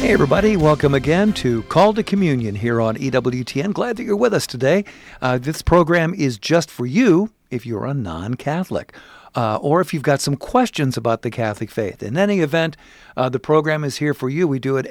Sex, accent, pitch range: male, American, 120-155 Hz